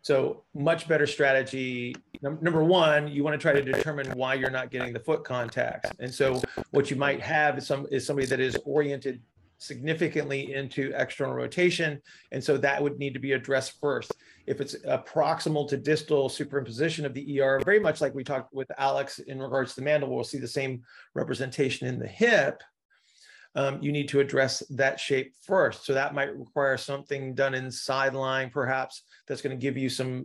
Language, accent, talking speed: English, American, 195 wpm